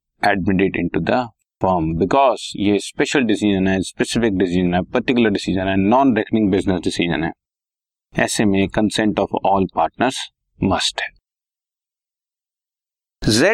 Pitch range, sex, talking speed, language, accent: 95-125 Hz, male, 95 wpm, Hindi, native